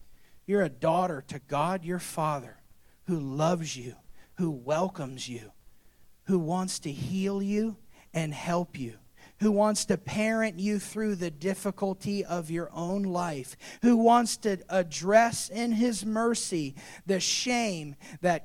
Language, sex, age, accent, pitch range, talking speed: English, male, 40-59, American, 155-235 Hz, 140 wpm